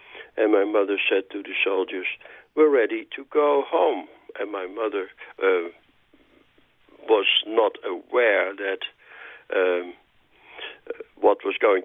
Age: 60-79